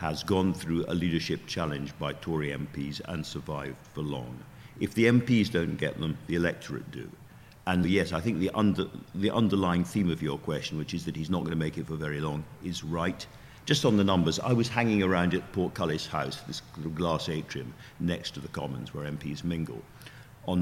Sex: male